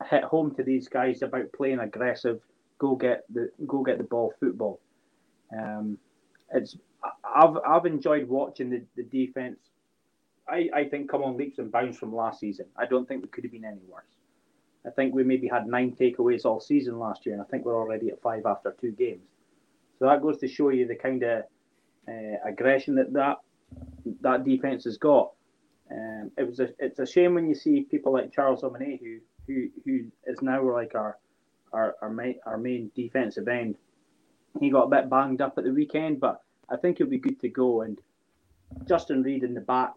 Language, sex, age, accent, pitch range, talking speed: English, male, 20-39, British, 120-145 Hz, 200 wpm